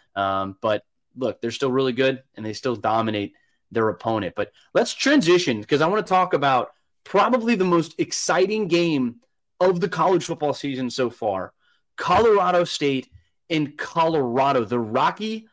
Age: 20-39